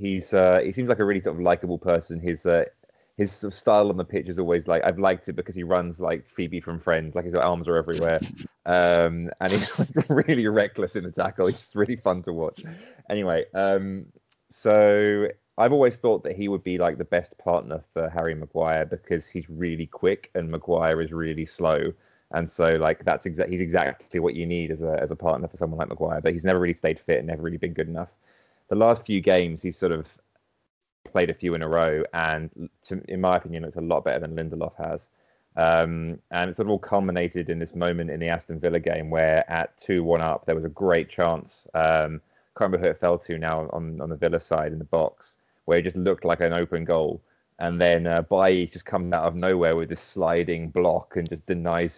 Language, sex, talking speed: English, male, 235 wpm